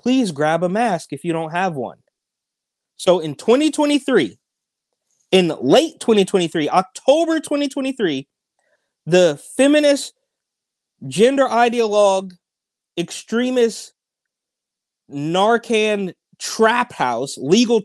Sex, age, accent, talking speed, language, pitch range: male, 30-49, American, 85 wpm, English, 155-210 Hz